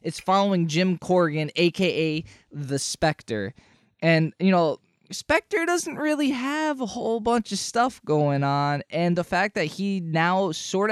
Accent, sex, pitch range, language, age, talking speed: American, male, 120-160 Hz, English, 20-39, 155 wpm